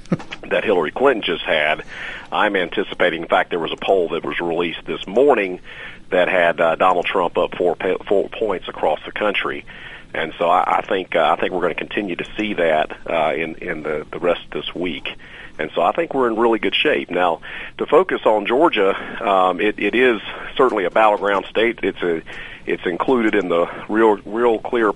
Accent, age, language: American, 40-59, English